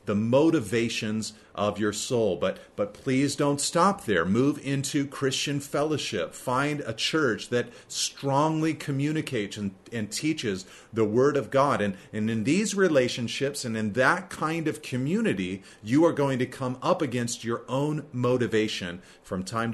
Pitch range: 105-135 Hz